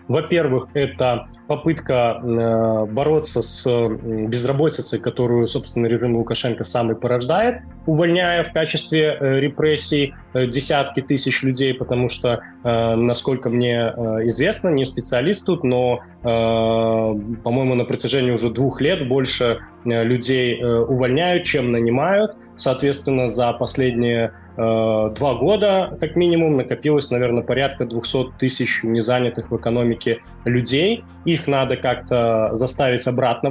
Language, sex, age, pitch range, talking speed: Russian, male, 20-39, 120-150 Hz, 105 wpm